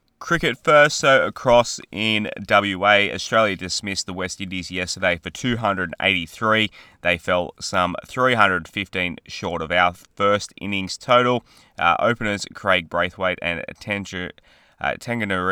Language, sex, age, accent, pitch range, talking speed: English, male, 20-39, Australian, 90-110 Hz, 140 wpm